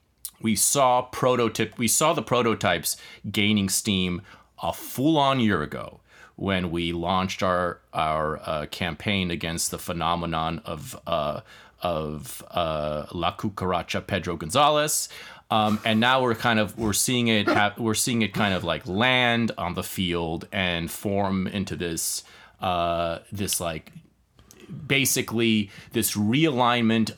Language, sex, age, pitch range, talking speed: English, male, 30-49, 90-115 Hz, 130 wpm